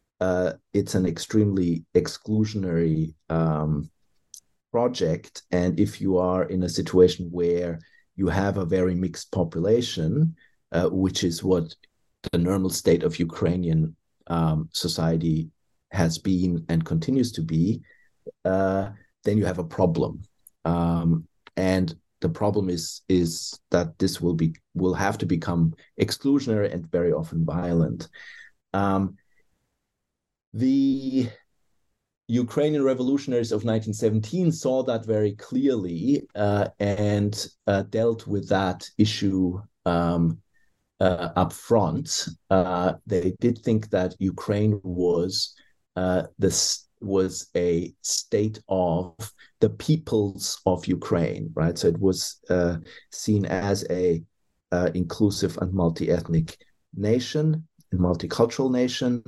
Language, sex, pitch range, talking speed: English, male, 85-105 Hz, 120 wpm